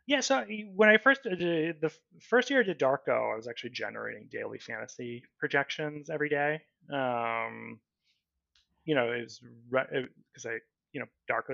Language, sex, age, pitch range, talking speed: English, male, 20-39, 115-155 Hz, 165 wpm